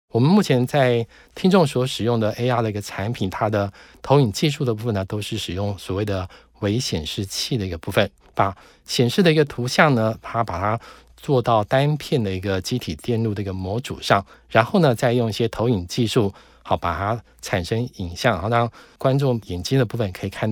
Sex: male